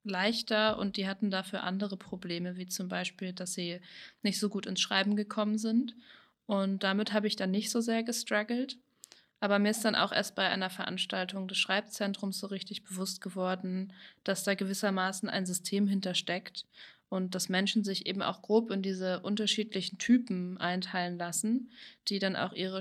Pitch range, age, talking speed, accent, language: 190-215 Hz, 20-39, 175 wpm, German, German